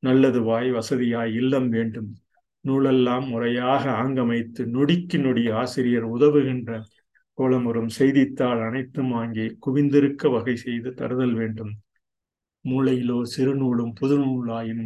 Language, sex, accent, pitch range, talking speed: Tamil, male, native, 115-130 Hz, 95 wpm